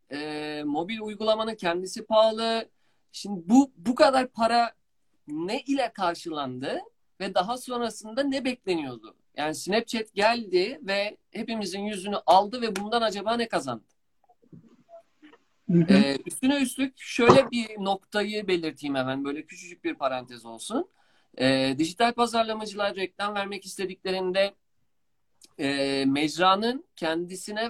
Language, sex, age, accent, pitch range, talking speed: Turkish, male, 50-69, native, 150-225 Hz, 115 wpm